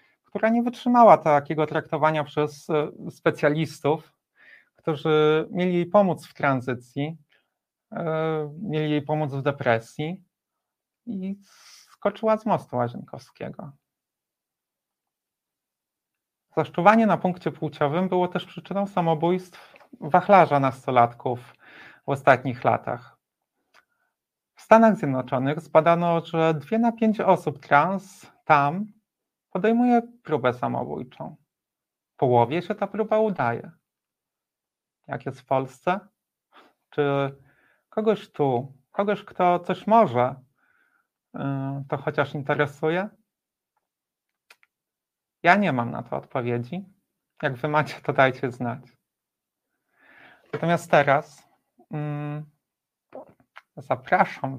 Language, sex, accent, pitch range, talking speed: Polish, male, native, 145-190 Hz, 95 wpm